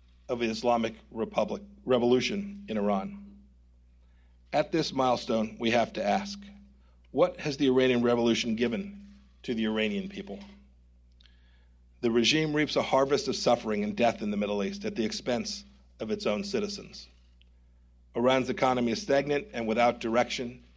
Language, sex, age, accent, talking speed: English, male, 50-69, American, 145 wpm